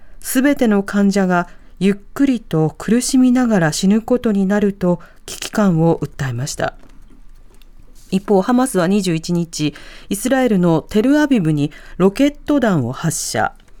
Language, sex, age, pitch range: Japanese, female, 40-59, 165-250 Hz